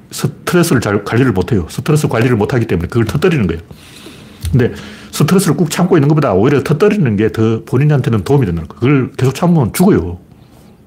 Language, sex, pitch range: Korean, male, 100-145 Hz